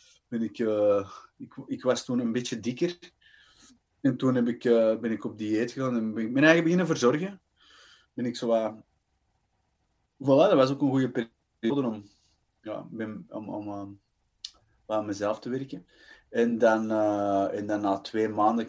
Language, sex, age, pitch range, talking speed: Dutch, male, 20-39, 95-115 Hz, 175 wpm